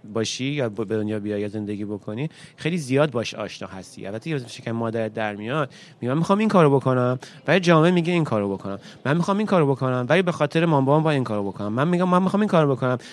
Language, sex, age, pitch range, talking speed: Persian, male, 30-49, 120-160 Hz, 230 wpm